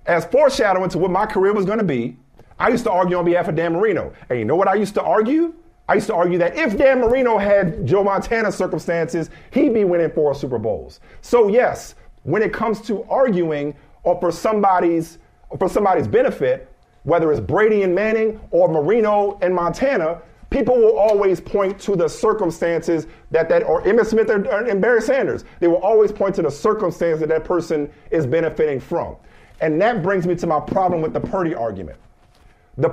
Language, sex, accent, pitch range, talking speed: English, male, American, 170-225 Hz, 195 wpm